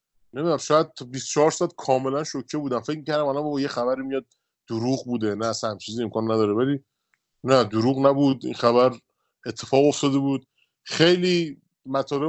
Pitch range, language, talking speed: 125-150 Hz, Persian, 155 wpm